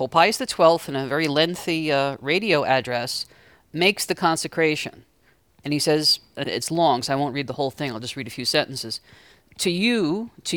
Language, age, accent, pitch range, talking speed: English, 40-59, American, 150-215 Hz, 195 wpm